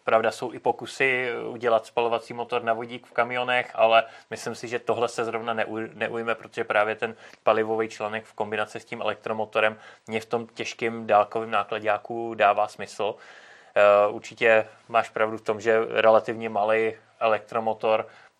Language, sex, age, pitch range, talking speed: Czech, male, 20-39, 110-120 Hz, 150 wpm